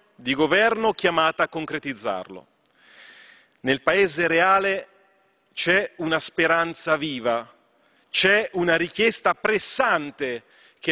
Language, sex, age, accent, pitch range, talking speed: Italian, male, 40-59, native, 165-220 Hz, 95 wpm